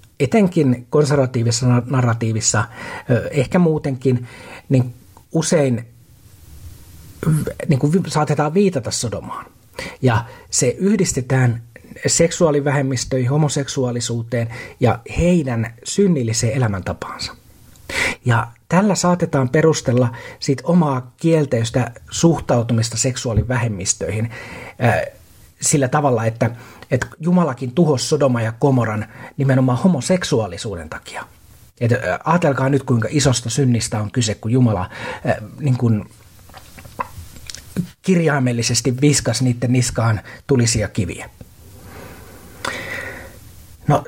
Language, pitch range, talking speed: Finnish, 115-150 Hz, 80 wpm